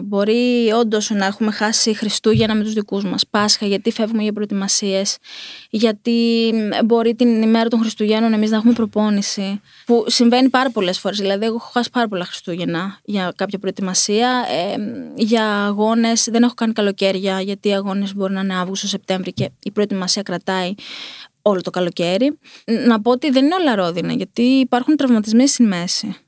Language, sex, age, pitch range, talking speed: Greek, female, 20-39, 200-240 Hz, 165 wpm